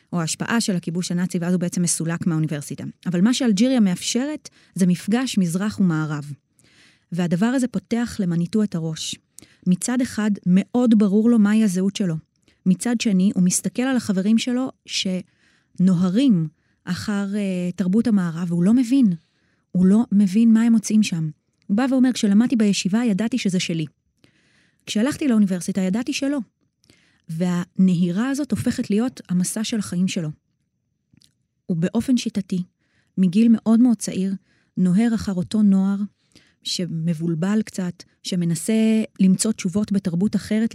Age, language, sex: 20-39, Hebrew, female